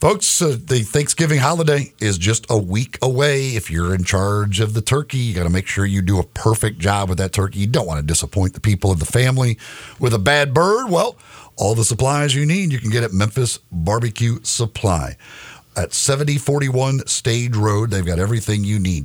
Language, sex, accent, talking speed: English, male, American, 205 wpm